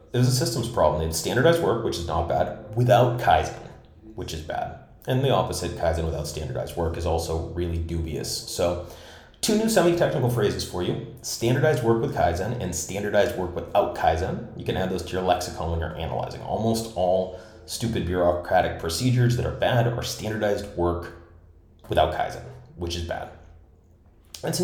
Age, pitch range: 30-49, 85-115 Hz